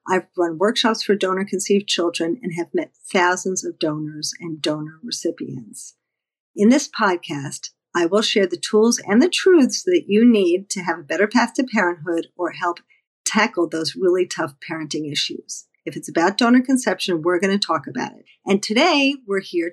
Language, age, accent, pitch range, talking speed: English, 50-69, American, 175-225 Hz, 180 wpm